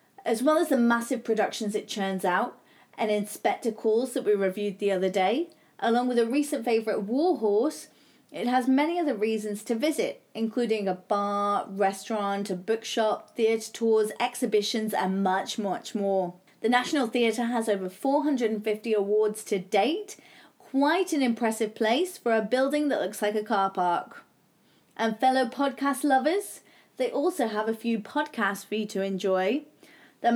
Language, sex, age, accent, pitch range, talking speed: English, female, 30-49, British, 200-255 Hz, 160 wpm